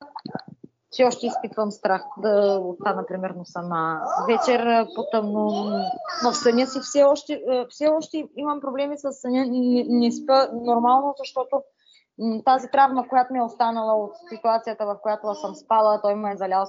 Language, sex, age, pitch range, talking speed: Bulgarian, female, 20-39, 215-285 Hz, 150 wpm